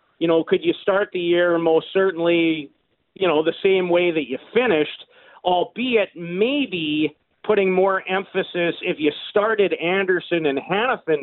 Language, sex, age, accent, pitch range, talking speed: English, male, 40-59, American, 155-195 Hz, 150 wpm